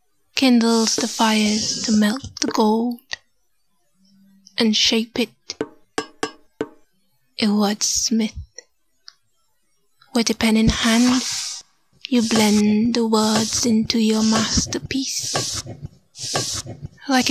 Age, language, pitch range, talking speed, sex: 20-39, English, 220-245 Hz, 85 wpm, female